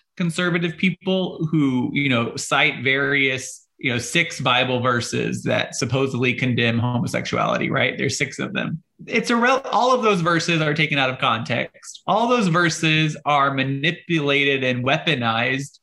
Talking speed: 150 wpm